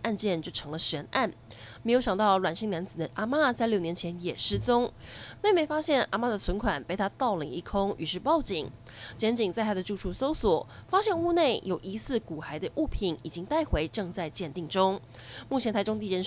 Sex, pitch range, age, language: female, 175-235 Hz, 20-39, Chinese